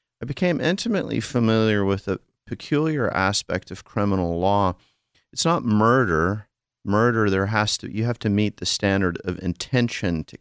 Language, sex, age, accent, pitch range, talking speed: English, male, 40-59, American, 90-120 Hz, 155 wpm